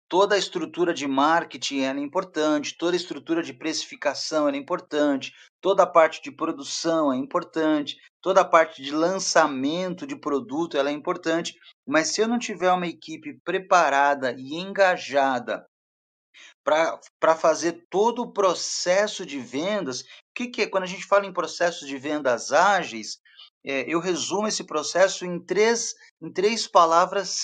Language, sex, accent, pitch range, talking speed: Portuguese, male, Brazilian, 160-205 Hz, 150 wpm